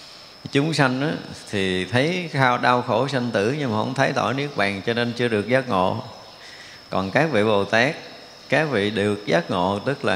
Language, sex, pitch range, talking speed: Vietnamese, male, 100-130 Hz, 205 wpm